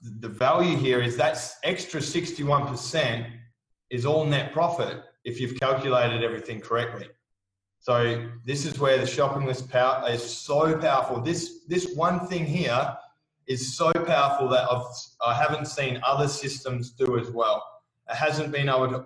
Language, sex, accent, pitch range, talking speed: English, male, Australian, 120-160 Hz, 155 wpm